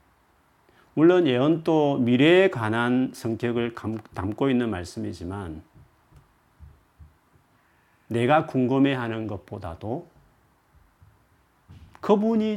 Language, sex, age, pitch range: Korean, male, 40-59, 100-150 Hz